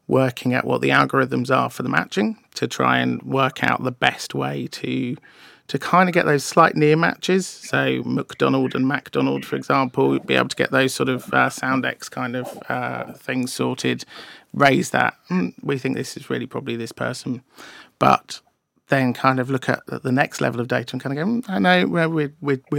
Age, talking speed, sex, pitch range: 40-59, 210 wpm, male, 125-145 Hz